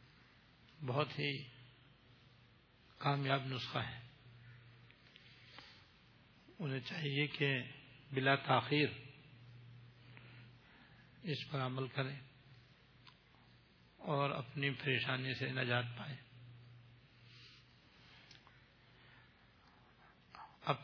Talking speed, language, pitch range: 60 wpm, Urdu, 120-140 Hz